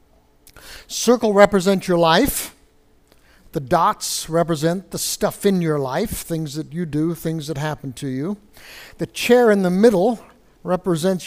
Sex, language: male, English